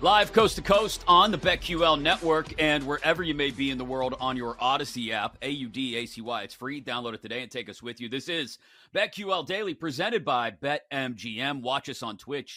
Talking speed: 200 wpm